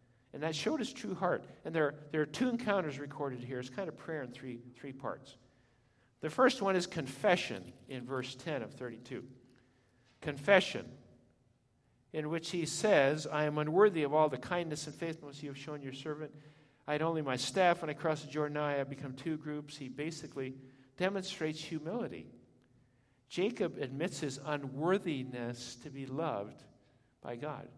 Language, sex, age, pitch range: English, male, 50-69, 125-155 Hz